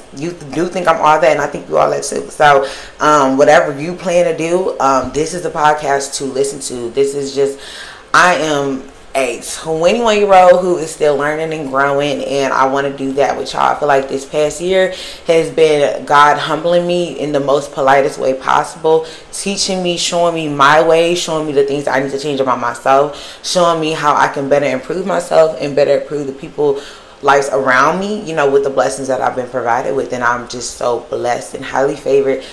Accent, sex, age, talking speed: American, female, 20-39, 215 wpm